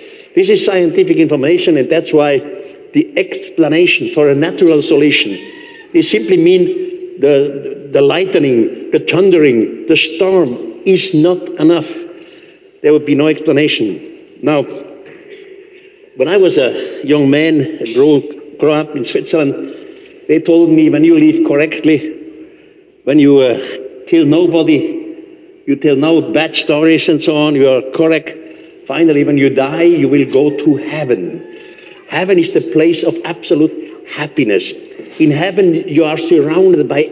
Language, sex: English, male